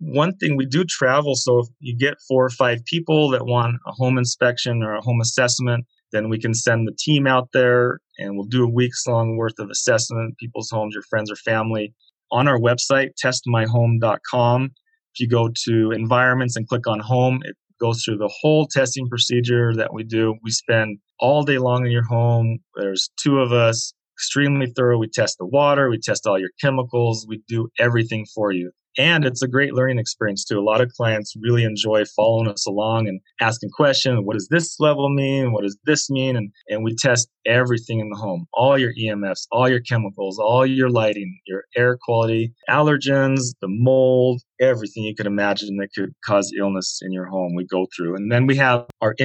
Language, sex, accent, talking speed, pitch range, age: English, male, American, 200 wpm, 110-130 Hz, 30-49